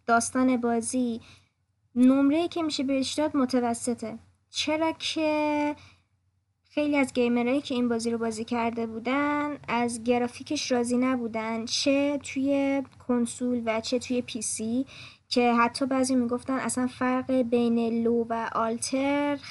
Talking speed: 125 wpm